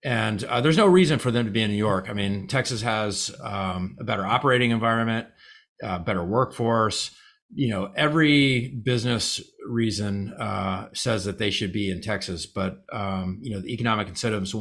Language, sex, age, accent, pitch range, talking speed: English, male, 40-59, American, 105-130 Hz, 180 wpm